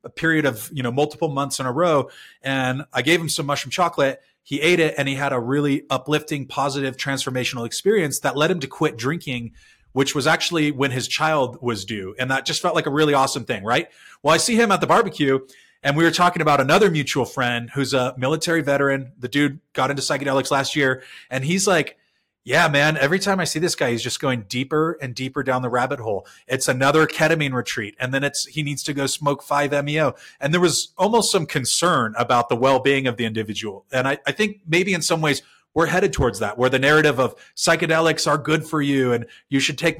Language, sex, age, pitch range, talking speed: English, male, 30-49, 130-160 Hz, 225 wpm